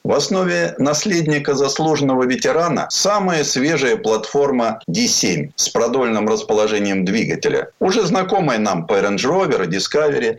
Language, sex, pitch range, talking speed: Russian, male, 140-205 Hz, 115 wpm